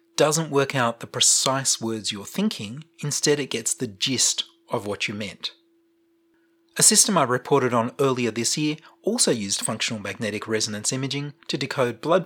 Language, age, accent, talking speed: English, 30-49, Australian, 165 wpm